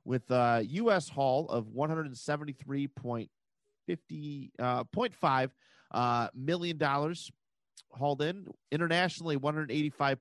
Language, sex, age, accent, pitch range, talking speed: English, male, 30-49, American, 120-155 Hz, 110 wpm